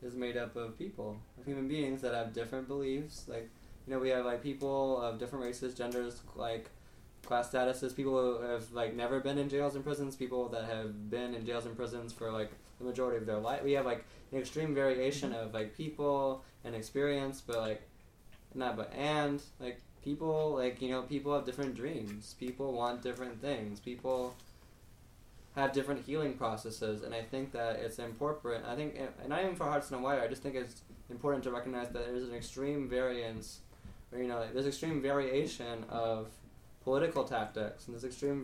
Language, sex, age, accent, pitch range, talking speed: English, male, 20-39, American, 115-140 Hz, 195 wpm